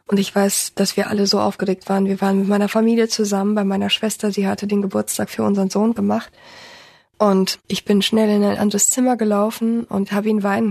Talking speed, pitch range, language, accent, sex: 220 wpm, 190-220 Hz, German, German, female